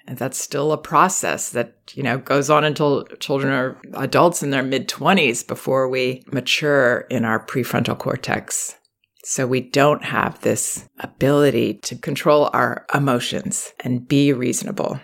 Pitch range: 130-155 Hz